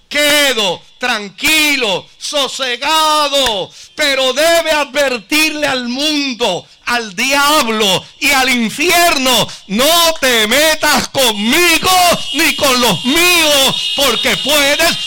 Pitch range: 215-295 Hz